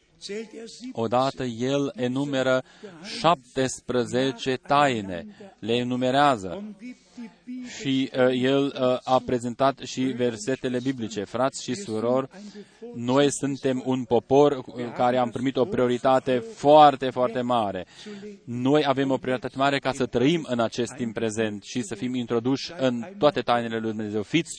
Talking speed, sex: 130 wpm, male